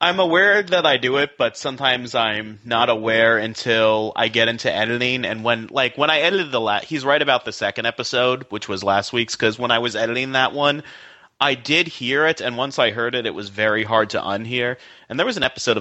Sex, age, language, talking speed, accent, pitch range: male, 30-49, English, 230 wpm, American, 105-130 Hz